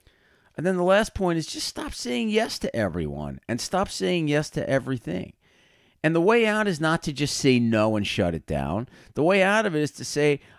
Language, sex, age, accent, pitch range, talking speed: English, male, 40-59, American, 105-145 Hz, 225 wpm